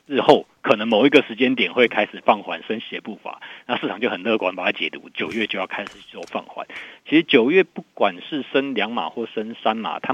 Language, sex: Chinese, male